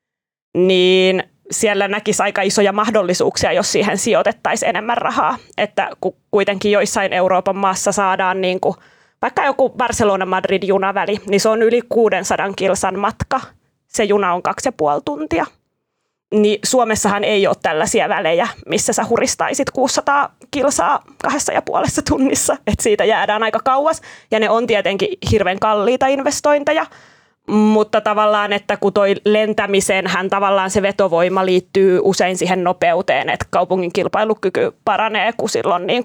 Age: 20-39